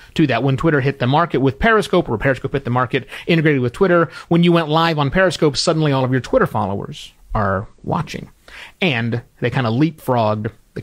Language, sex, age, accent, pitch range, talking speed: English, male, 30-49, American, 115-170 Hz, 205 wpm